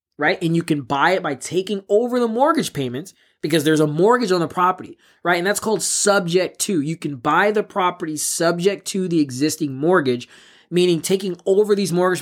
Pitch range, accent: 155-210 Hz, American